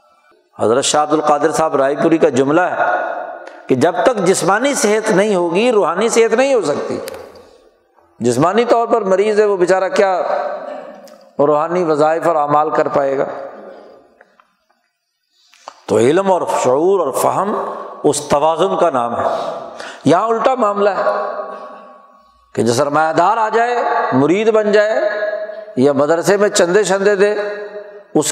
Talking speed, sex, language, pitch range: 145 wpm, male, Urdu, 165-240 Hz